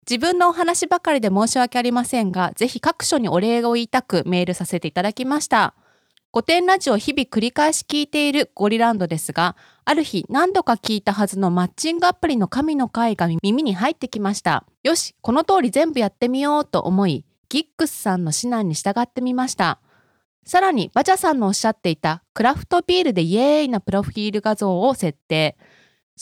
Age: 20-39